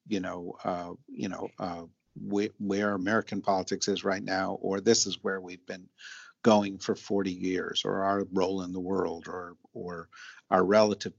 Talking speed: 175 wpm